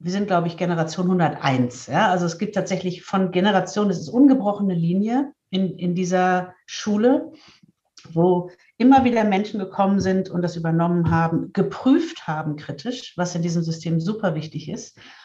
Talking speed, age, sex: 160 wpm, 50-69, female